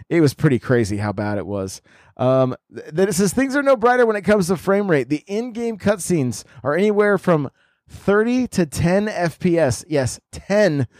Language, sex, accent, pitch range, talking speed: English, male, American, 115-160 Hz, 185 wpm